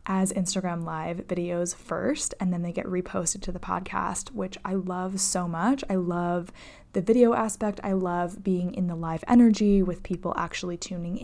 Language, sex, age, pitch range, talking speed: English, female, 10-29, 180-200 Hz, 180 wpm